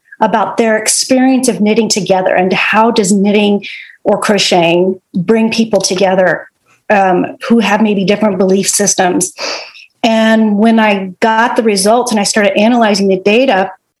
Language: English